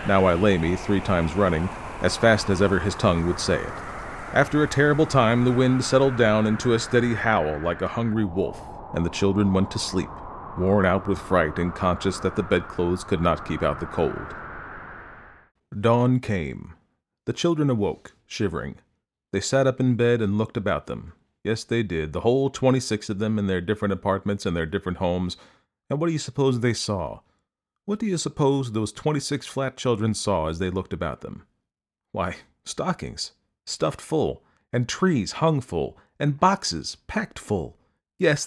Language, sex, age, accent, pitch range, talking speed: English, male, 40-59, American, 95-130 Hz, 185 wpm